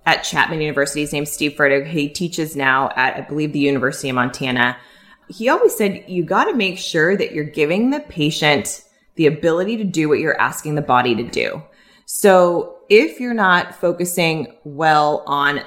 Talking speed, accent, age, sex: 190 wpm, American, 20-39, female